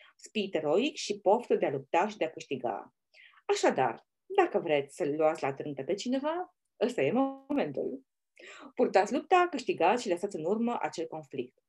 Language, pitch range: Romanian, 155-215 Hz